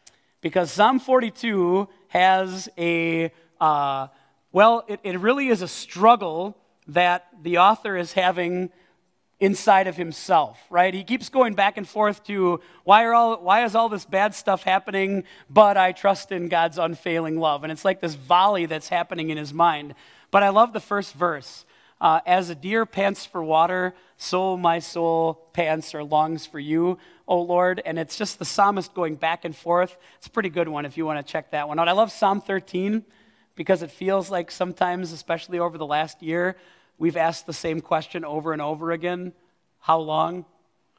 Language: English